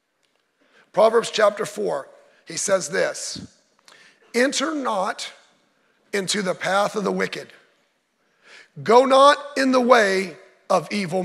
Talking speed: 110 wpm